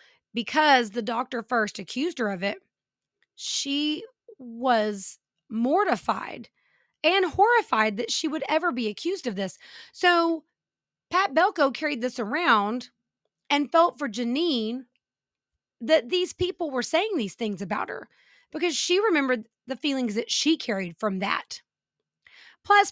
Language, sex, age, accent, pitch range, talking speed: English, female, 30-49, American, 225-325 Hz, 135 wpm